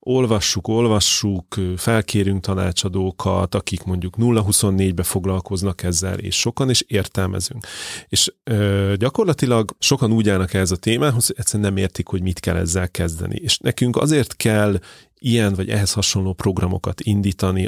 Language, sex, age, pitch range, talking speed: Hungarian, male, 30-49, 95-110 Hz, 135 wpm